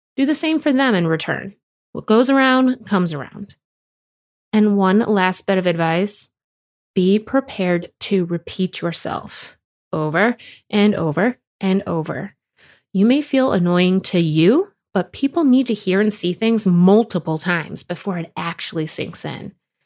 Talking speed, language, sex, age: 150 wpm, English, female, 20-39